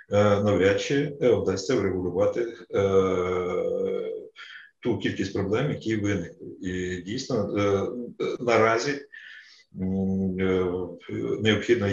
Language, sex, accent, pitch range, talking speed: Ukrainian, male, native, 100-140 Hz, 65 wpm